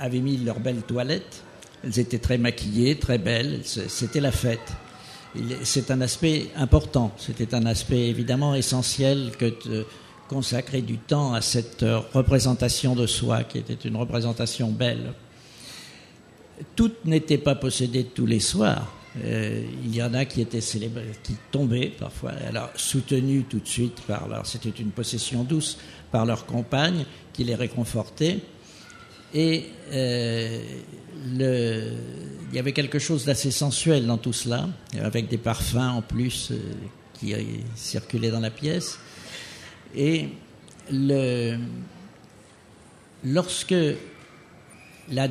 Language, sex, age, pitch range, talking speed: Italian, male, 60-79, 115-150 Hz, 130 wpm